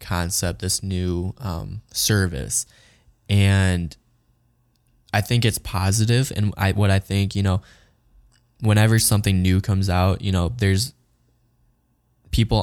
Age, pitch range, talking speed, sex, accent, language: 10-29, 90-100 Hz, 125 wpm, male, American, English